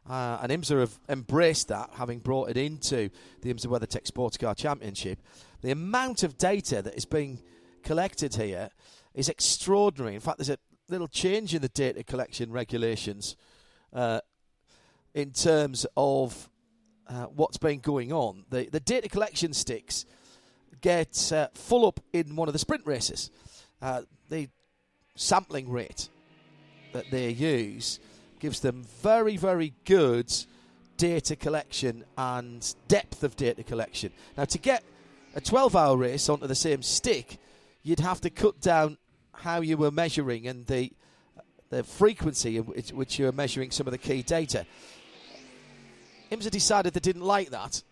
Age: 40-59